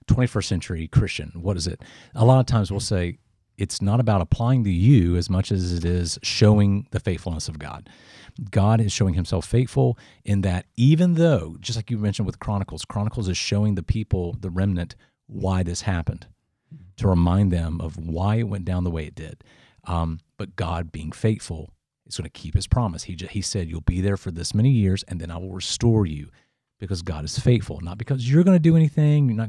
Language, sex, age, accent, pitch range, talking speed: English, male, 40-59, American, 90-115 Hz, 210 wpm